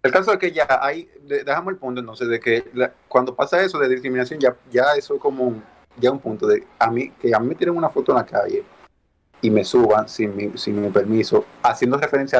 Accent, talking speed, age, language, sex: Venezuelan, 240 wpm, 30-49, Spanish, male